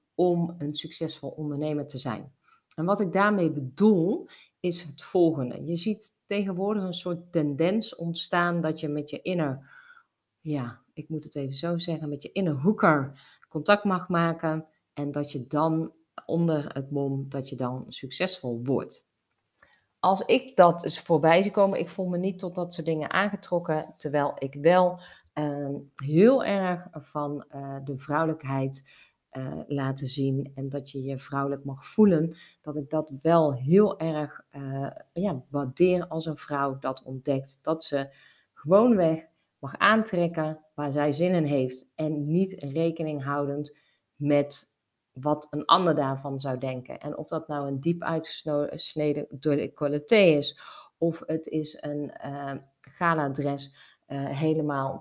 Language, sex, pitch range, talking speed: Dutch, female, 140-170 Hz, 150 wpm